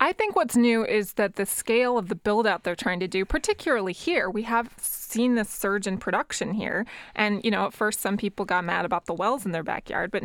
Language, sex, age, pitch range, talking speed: English, female, 20-39, 180-220 Hz, 240 wpm